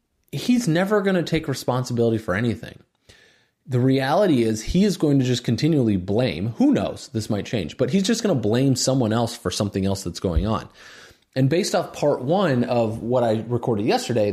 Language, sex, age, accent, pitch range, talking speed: English, male, 30-49, American, 105-130 Hz, 195 wpm